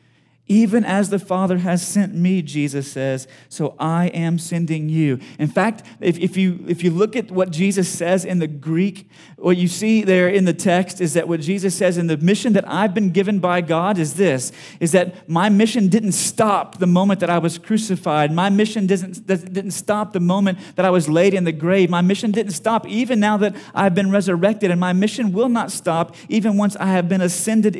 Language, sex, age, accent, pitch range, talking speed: English, male, 40-59, American, 155-195 Hz, 215 wpm